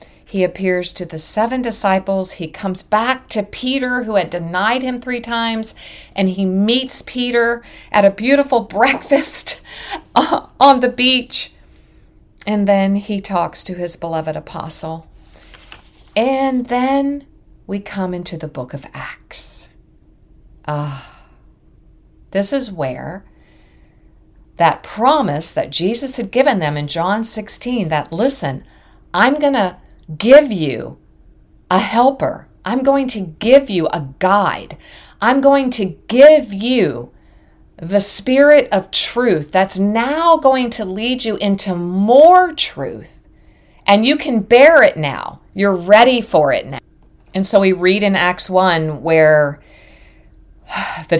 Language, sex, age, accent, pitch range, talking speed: English, female, 50-69, American, 175-245 Hz, 130 wpm